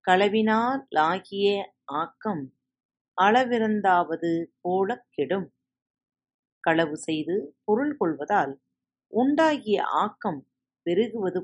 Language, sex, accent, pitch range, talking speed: Tamil, female, native, 165-230 Hz, 60 wpm